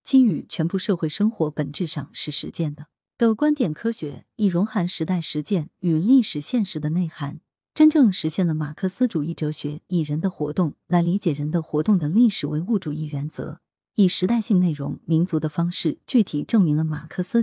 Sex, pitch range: female, 155-215 Hz